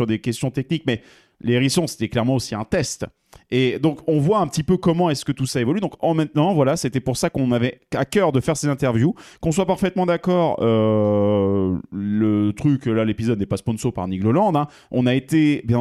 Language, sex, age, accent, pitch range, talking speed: French, male, 30-49, French, 115-155 Hz, 230 wpm